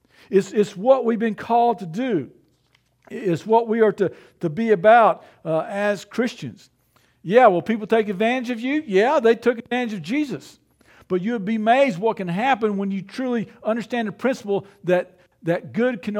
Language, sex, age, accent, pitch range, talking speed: English, male, 50-69, American, 180-235 Hz, 180 wpm